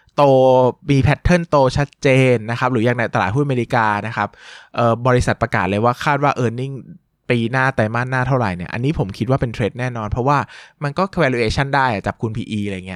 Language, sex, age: Thai, male, 20-39